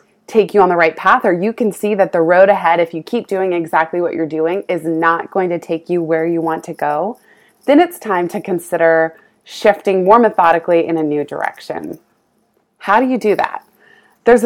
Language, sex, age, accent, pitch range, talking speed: English, female, 20-39, American, 170-215 Hz, 210 wpm